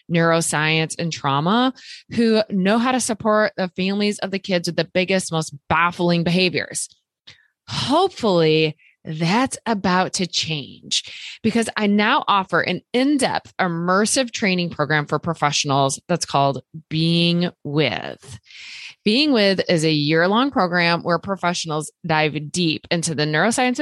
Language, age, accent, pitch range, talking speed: English, 20-39, American, 160-220 Hz, 130 wpm